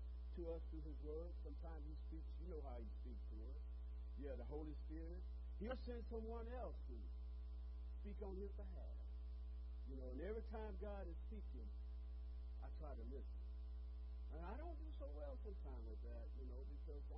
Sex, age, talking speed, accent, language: male, 60-79, 185 wpm, American, English